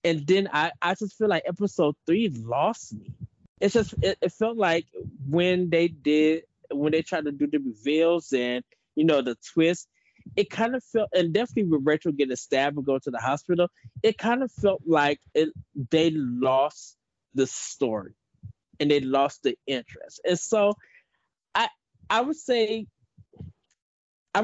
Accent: American